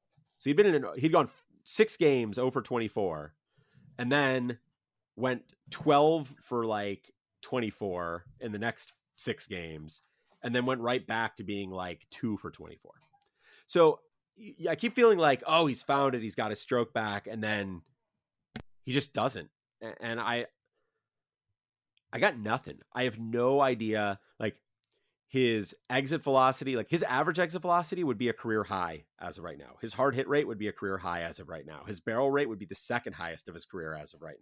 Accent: American